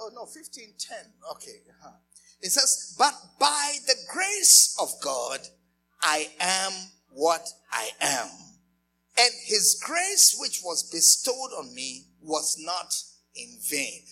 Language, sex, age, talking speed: English, male, 50-69, 130 wpm